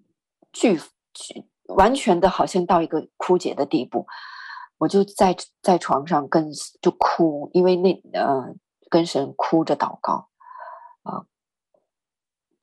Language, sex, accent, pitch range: Chinese, female, native, 160-195 Hz